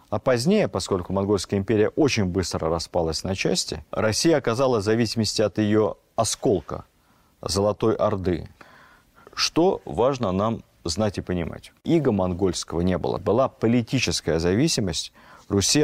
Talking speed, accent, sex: 125 wpm, native, male